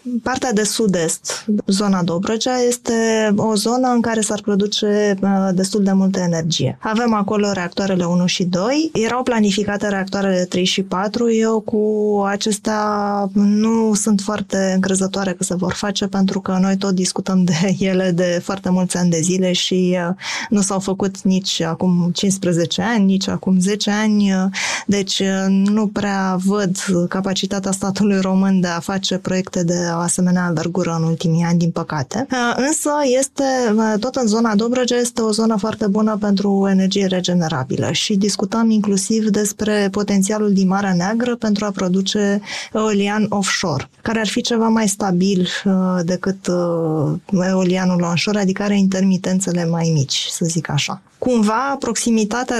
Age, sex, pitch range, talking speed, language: 20-39, female, 185-215 Hz, 150 wpm, Romanian